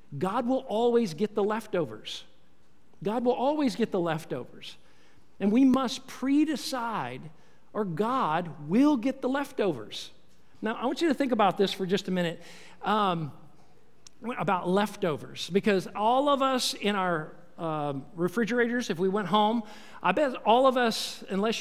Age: 50-69